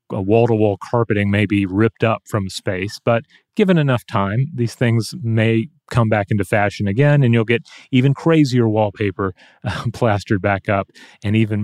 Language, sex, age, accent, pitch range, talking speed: English, male, 30-49, American, 100-120 Hz, 160 wpm